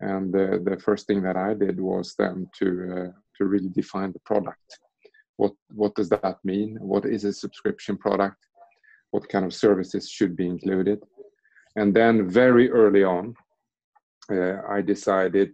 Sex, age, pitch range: male, 30-49, 90-105 Hz